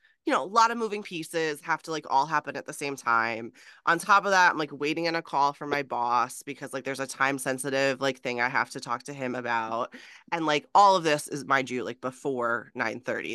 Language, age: English, 20-39